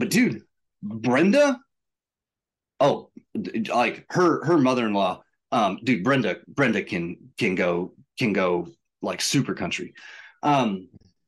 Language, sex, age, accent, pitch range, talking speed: English, male, 30-49, American, 110-165 Hz, 110 wpm